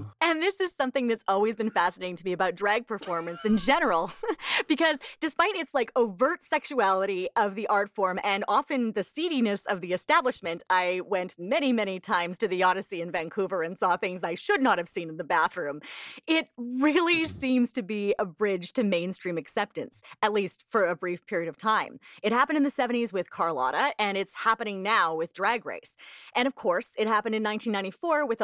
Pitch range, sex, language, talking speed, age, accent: 175-250 Hz, female, English, 195 wpm, 30-49, American